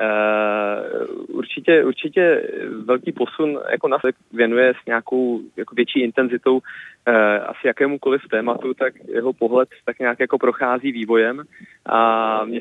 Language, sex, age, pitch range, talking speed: Czech, male, 20-39, 115-140 Hz, 130 wpm